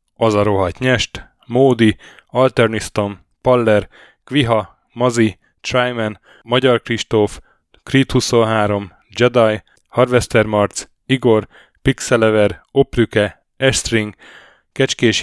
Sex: male